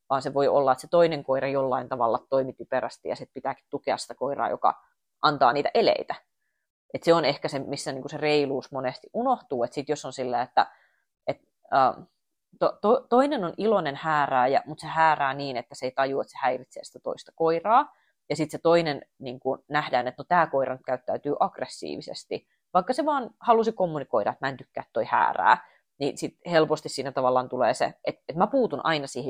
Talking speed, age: 195 wpm, 30-49